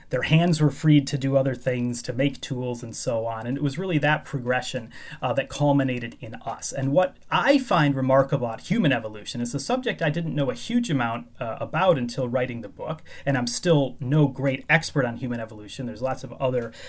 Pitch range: 125-160 Hz